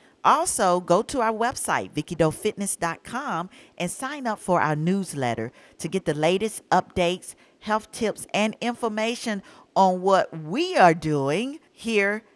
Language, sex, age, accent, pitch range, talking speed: English, female, 50-69, American, 160-215 Hz, 130 wpm